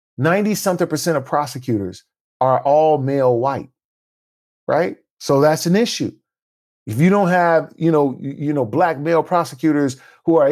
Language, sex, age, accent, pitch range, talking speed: English, male, 40-59, American, 125-165 Hz, 150 wpm